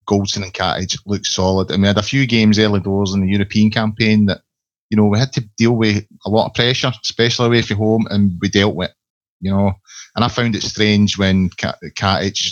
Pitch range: 95-110 Hz